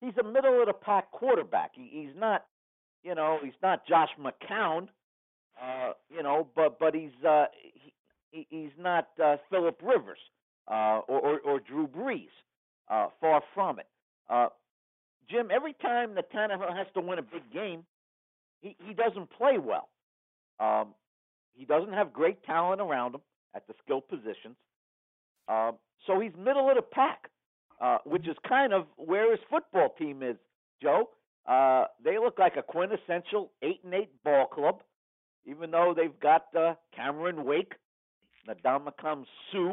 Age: 50-69